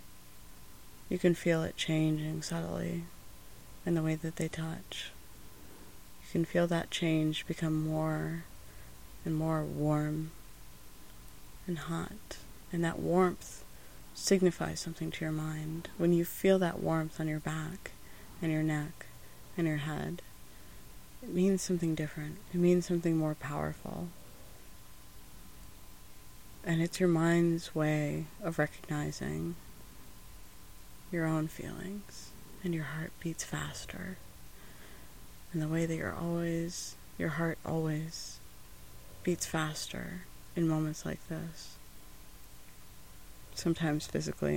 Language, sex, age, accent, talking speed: English, female, 30-49, American, 115 wpm